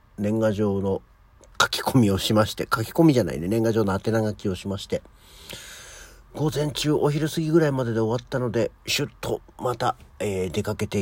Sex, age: male, 50-69